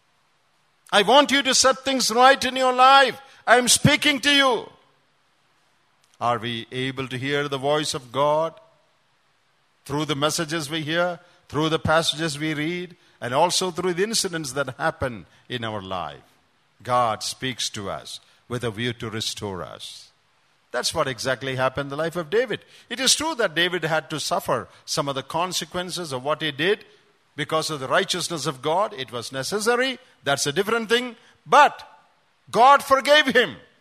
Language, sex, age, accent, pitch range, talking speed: English, male, 50-69, Indian, 145-215 Hz, 170 wpm